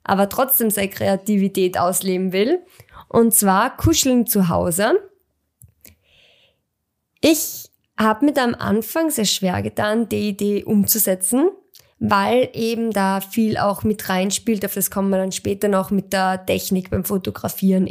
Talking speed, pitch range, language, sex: 140 wpm, 195-235 Hz, German, female